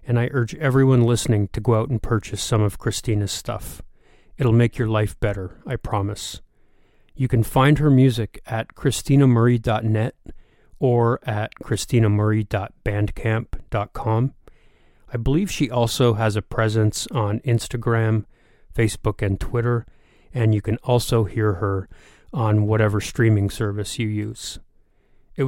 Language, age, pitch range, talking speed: English, 30-49, 105-120 Hz, 130 wpm